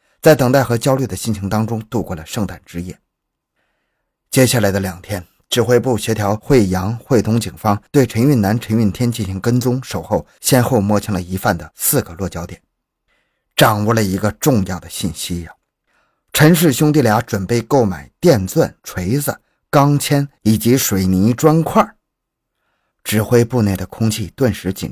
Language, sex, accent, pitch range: Chinese, male, native, 100-140 Hz